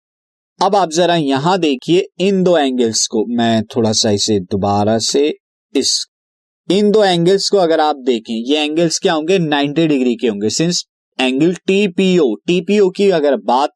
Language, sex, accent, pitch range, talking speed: Hindi, male, native, 130-190 Hz, 165 wpm